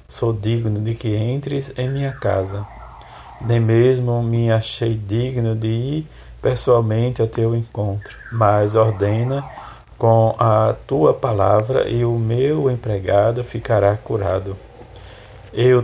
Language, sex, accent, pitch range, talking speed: Portuguese, male, Brazilian, 105-120 Hz, 120 wpm